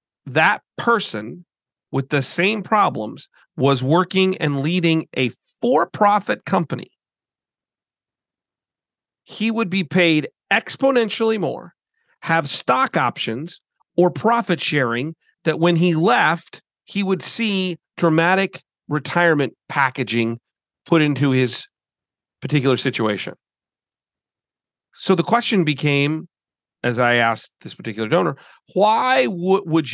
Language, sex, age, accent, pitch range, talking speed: English, male, 40-59, American, 140-195 Hz, 105 wpm